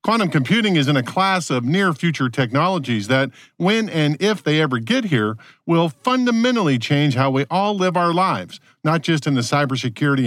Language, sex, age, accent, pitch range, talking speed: English, male, 50-69, American, 140-195 Hz, 180 wpm